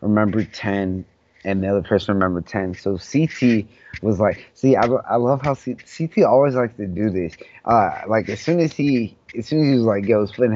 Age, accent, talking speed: 20-39, American, 215 wpm